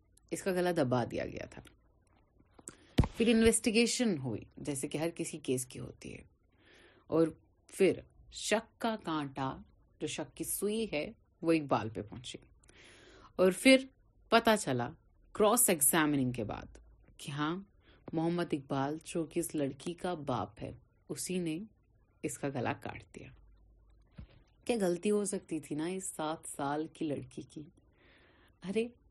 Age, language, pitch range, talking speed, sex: 30-49, Urdu, 135-175 Hz, 140 wpm, female